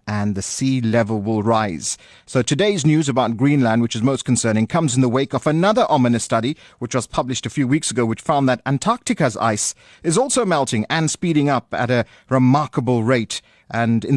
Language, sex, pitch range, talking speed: English, male, 110-135 Hz, 200 wpm